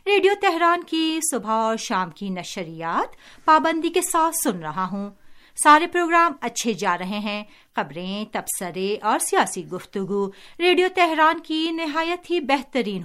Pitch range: 190-270 Hz